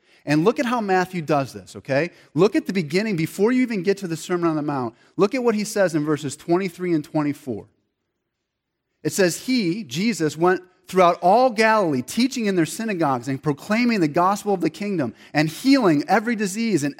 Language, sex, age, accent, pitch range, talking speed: English, male, 30-49, American, 160-215 Hz, 200 wpm